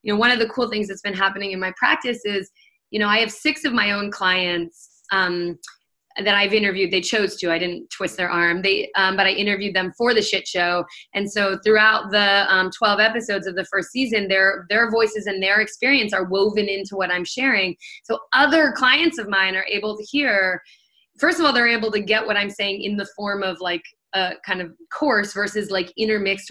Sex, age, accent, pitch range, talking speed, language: female, 20-39, American, 195-245 Hz, 225 wpm, English